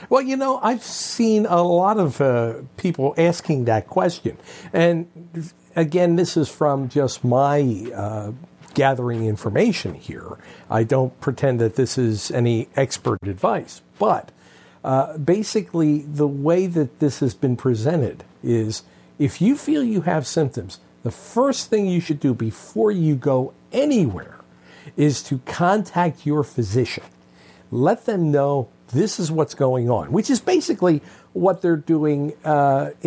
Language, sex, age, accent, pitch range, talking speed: English, male, 60-79, American, 120-175 Hz, 145 wpm